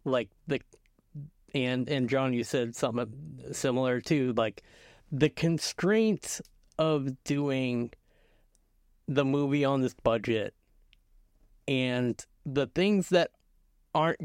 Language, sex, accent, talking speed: English, male, American, 105 wpm